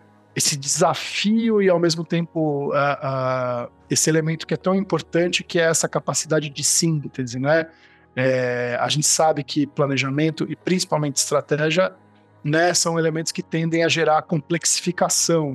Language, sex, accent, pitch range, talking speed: Portuguese, male, Brazilian, 145-170 Hz, 135 wpm